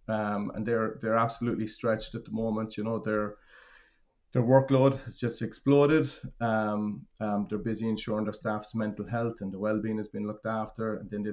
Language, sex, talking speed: English, male, 185 wpm